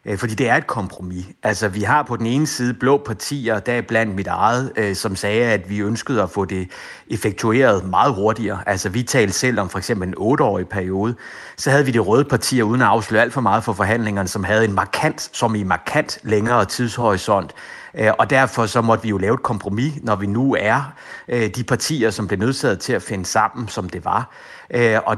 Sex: male